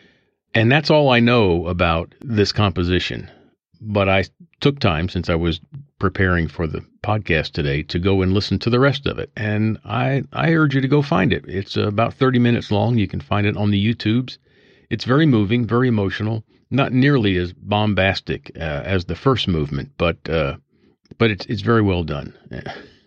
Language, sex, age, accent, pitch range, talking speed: English, male, 50-69, American, 85-115 Hz, 185 wpm